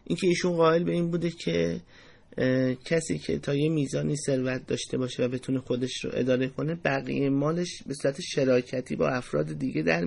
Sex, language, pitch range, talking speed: male, Persian, 125-155 Hz, 180 wpm